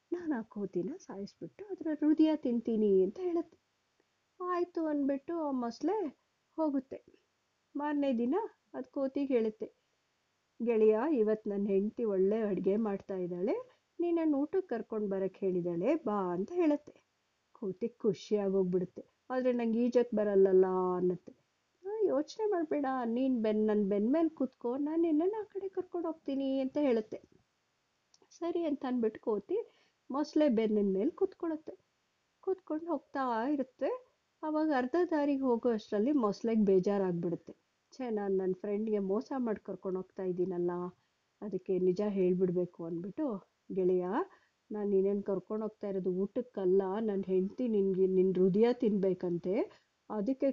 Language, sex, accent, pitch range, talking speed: Kannada, female, native, 195-295 Hz, 115 wpm